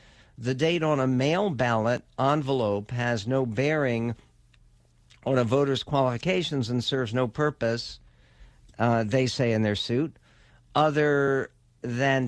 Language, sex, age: English, male, 60-79